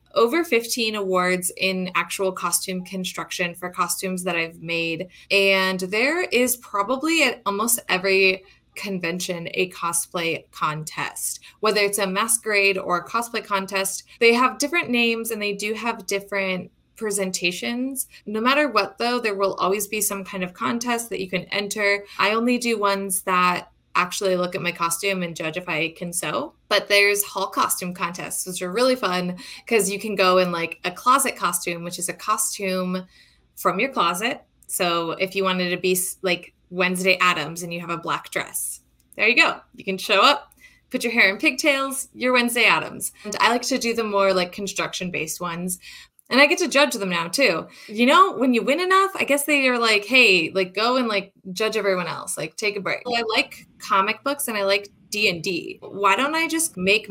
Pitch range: 180-235 Hz